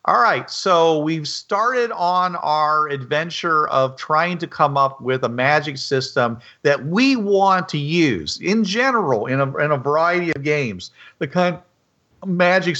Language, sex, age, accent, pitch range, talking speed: English, male, 50-69, American, 130-160 Hz, 165 wpm